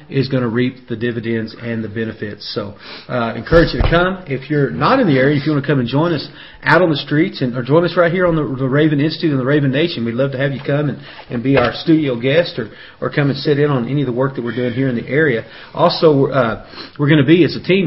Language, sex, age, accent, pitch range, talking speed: English, male, 40-59, American, 120-150 Hz, 285 wpm